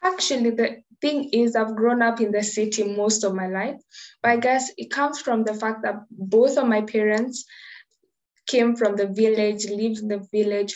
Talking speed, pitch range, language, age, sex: 195 wpm, 210-245 Hz, English, 10-29, female